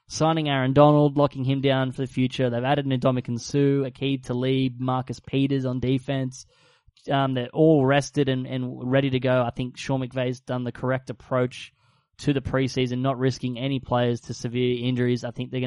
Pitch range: 110-130 Hz